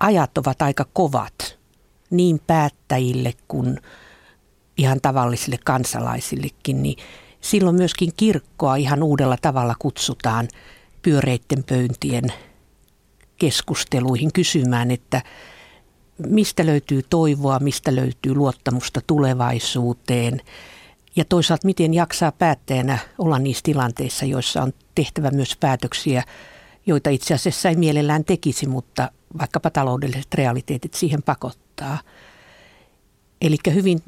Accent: native